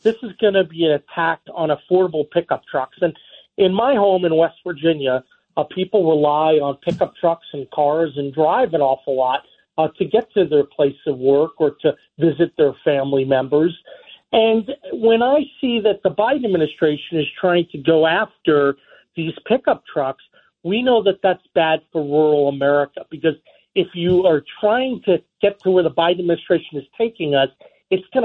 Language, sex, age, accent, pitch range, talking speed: English, male, 40-59, American, 155-215 Hz, 185 wpm